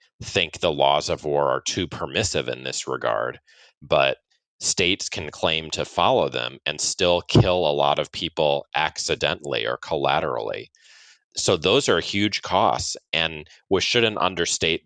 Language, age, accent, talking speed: Czech, 30-49, American, 150 wpm